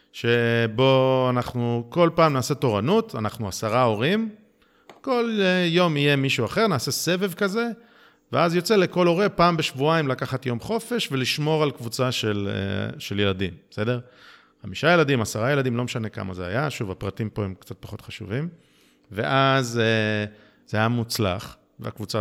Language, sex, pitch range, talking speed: Hebrew, male, 110-155 Hz, 145 wpm